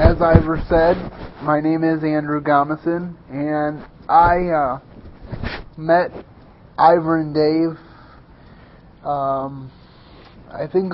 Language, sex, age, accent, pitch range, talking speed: English, male, 30-49, American, 140-160 Hz, 100 wpm